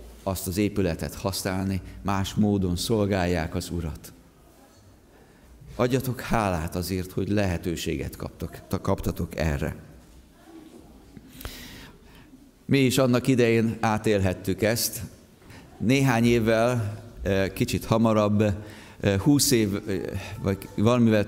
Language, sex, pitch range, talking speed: Hungarian, male, 100-125 Hz, 85 wpm